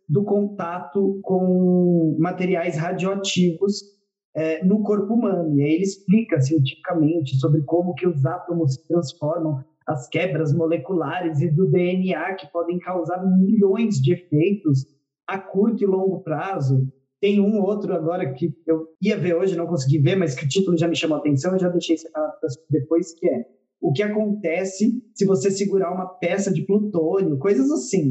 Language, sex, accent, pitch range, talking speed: Portuguese, male, Brazilian, 160-205 Hz, 165 wpm